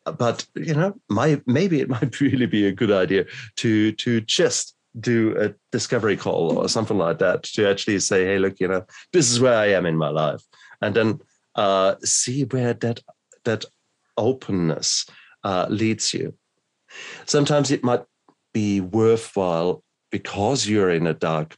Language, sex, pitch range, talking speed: English, male, 85-110 Hz, 165 wpm